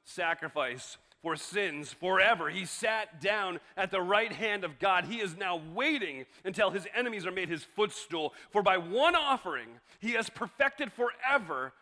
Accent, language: American, English